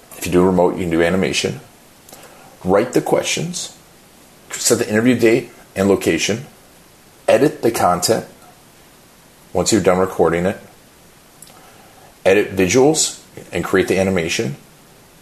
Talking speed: 120 wpm